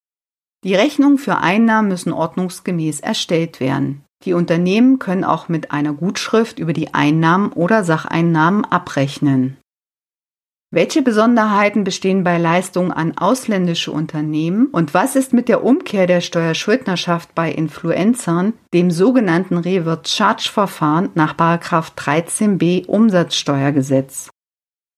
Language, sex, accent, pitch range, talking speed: German, female, German, 165-215 Hz, 110 wpm